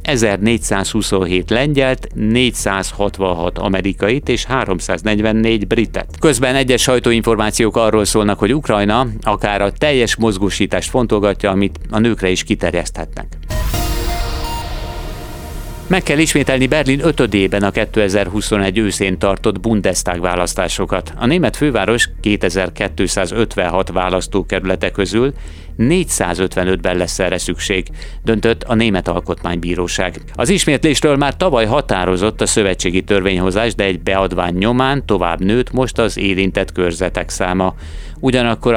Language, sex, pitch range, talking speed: Hungarian, male, 90-115 Hz, 105 wpm